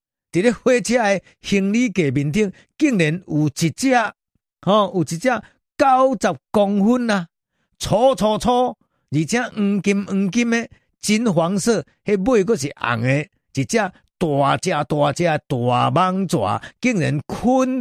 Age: 50-69